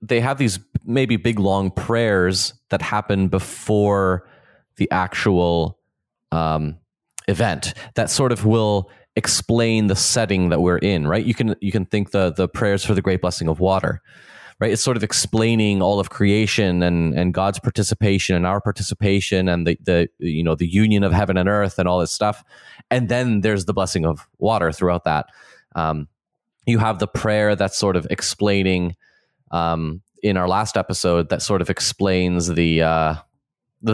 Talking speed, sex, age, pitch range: 175 wpm, male, 20-39, 90-110 Hz